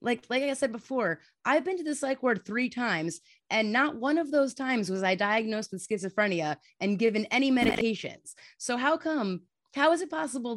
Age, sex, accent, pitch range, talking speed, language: 30-49, female, American, 200-275 Hz, 200 wpm, English